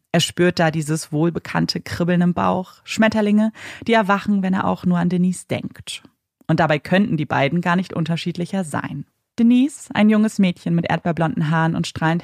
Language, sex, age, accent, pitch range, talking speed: German, female, 30-49, German, 165-220 Hz, 175 wpm